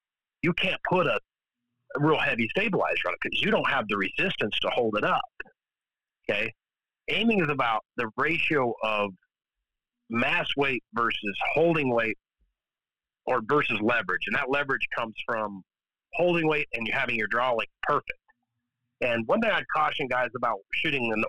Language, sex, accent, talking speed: English, male, American, 160 wpm